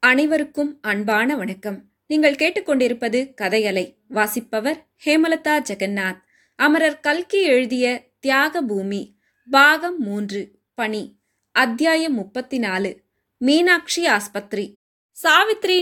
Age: 20-39